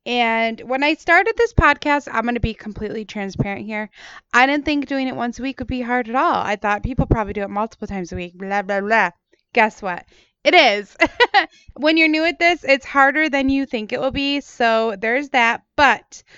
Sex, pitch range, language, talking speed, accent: female, 210-275 Hz, English, 220 wpm, American